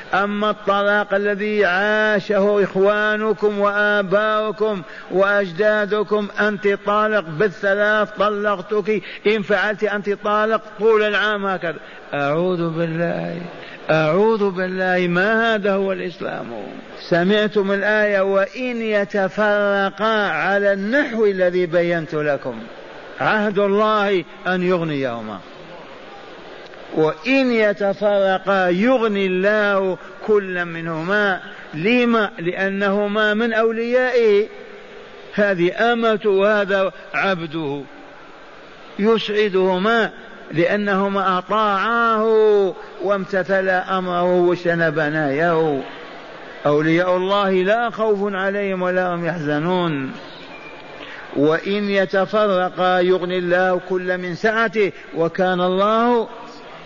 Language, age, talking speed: Arabic, 50-69, 80 wpm